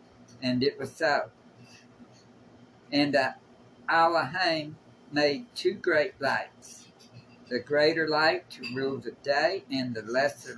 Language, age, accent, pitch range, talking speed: English, 50-69, American, 125-155 Hz, 120 wpm